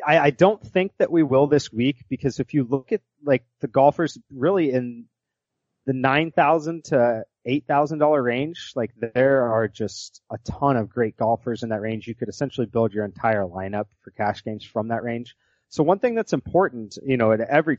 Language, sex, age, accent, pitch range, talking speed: English, male, 30-49, American, 105-140 Hz, 190 wpm